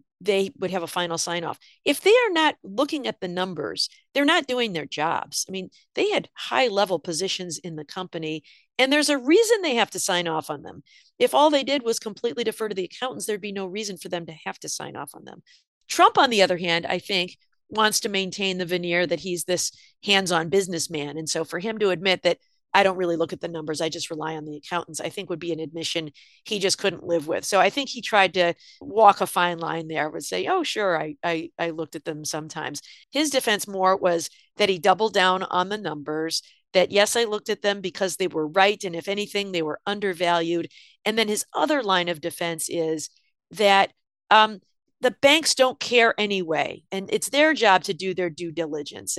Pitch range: 170-220 Hz